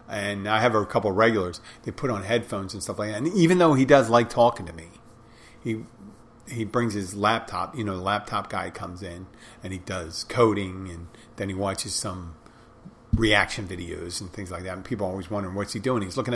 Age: 40-59